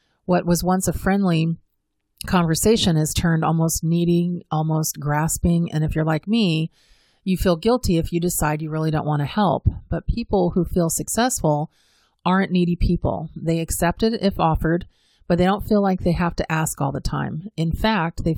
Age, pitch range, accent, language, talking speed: 30-49, 160-195 Hz, American, English, 185 wpm